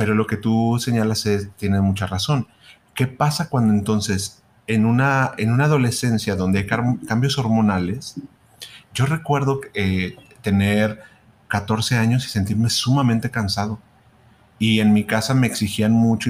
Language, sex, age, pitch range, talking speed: Spanish, male, 30-49, 100-125 Hz, 140 wpm